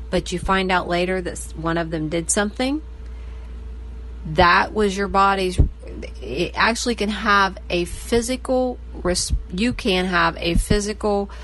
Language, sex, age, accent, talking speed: English, female, 40-59, American, 135 wpm